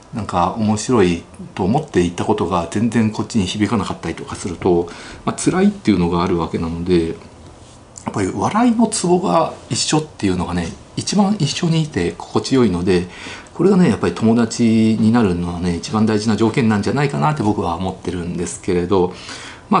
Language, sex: Japanese, male